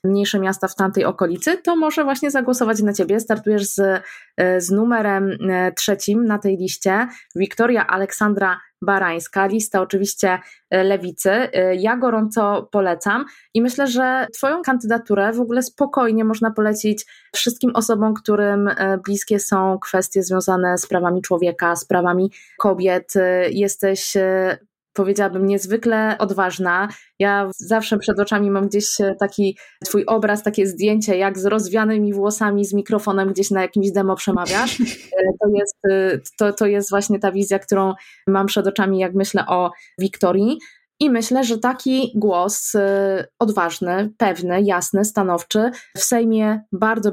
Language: Polish